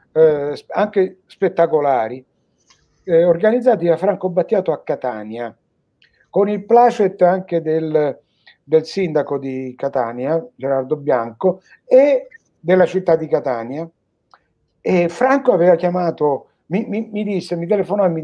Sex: male